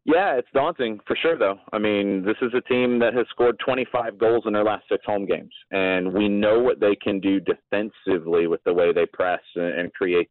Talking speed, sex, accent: 220 wpm, male, American